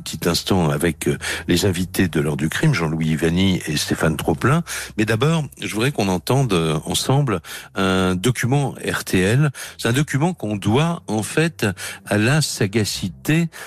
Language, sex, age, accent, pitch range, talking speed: French, male, 60-79, French, 90-120 Hz, 150 wpm